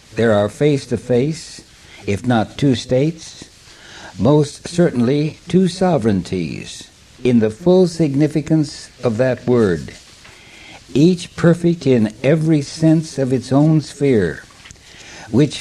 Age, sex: 60-79, male